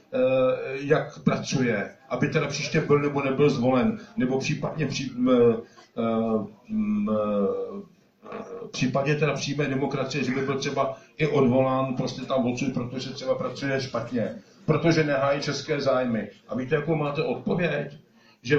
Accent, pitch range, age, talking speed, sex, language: native, 130-165 Hz, 50-69, 140 wpm, male, Czech